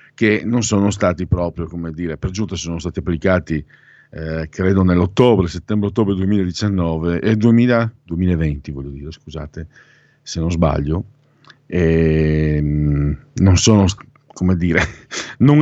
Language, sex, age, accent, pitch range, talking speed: Italian, male, 50-69, native, 80-100 Hz, 125 wpm